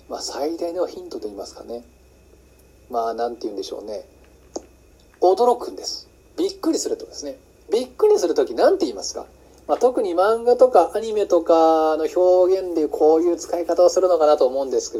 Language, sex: Japanese, male